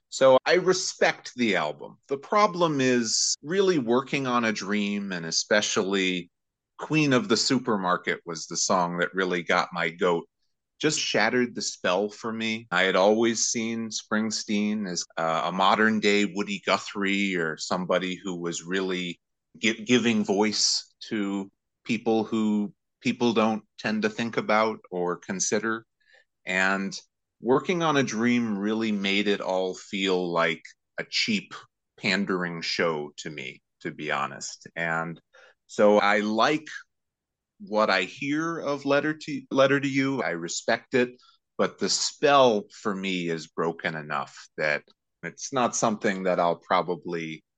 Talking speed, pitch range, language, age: 145 wpm, 90-120 Hz, English, 30-49